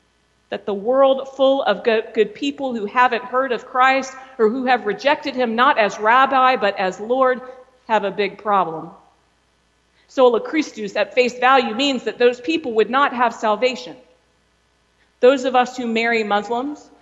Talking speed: 160 wpm